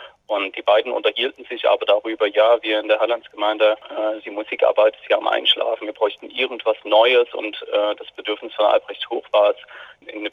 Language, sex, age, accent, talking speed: German, male, 30-49, German, 185 wpm